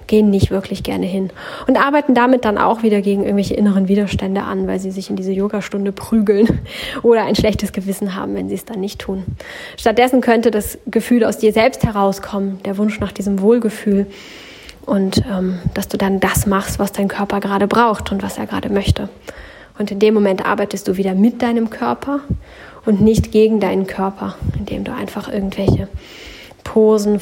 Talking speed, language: 185 wpm, German